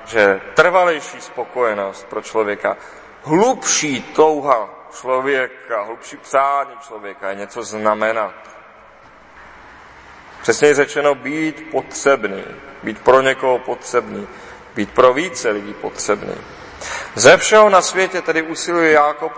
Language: Czech